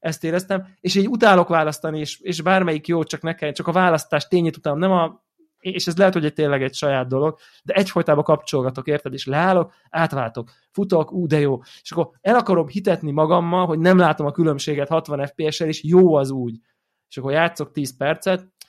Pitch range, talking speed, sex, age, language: 145-190 Hz, 190 wpm, male, 20-39, Hungarian